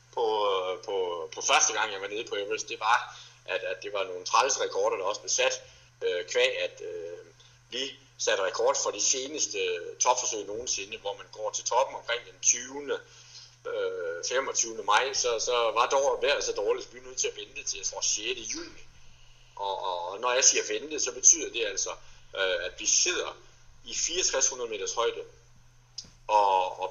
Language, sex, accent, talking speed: Danish, male, native, 185 wpm